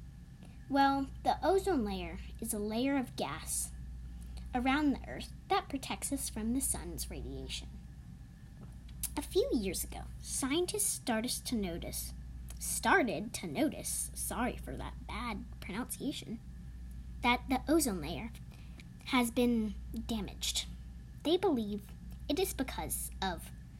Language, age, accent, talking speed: English, 10-29, American, 120 wpm